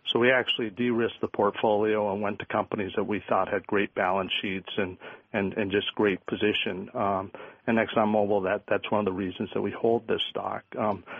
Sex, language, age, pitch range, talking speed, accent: male, English, 50-69, 105-120 Hz, 205 wpm, American